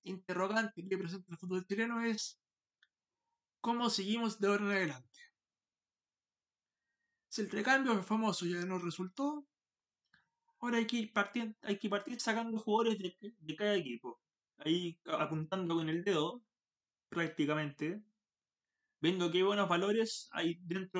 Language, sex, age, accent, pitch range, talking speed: Spanish, male, 20-39, Argentinian, 150-215 Hz, 135 wpm